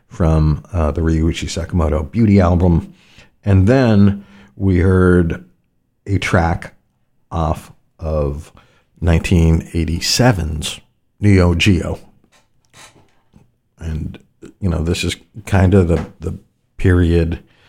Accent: American